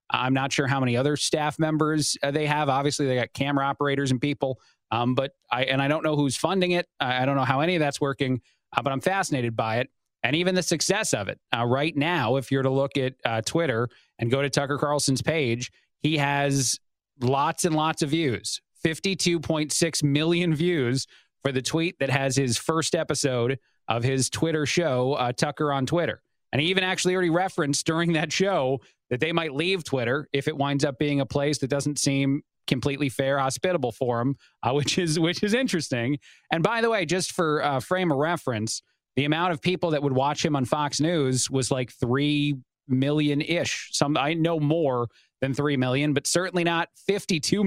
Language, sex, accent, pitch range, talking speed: English, male, American, 135-170 Hz, 205 wpm